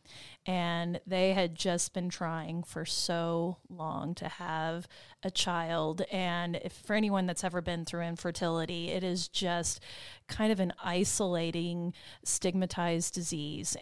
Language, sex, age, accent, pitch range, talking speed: English, female, 30-49, American, 170-190 Hz, 135 wpm